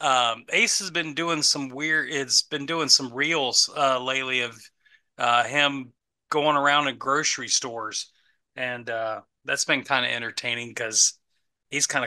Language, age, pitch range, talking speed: English, 30-49, 125-160 Hz, 160 wpm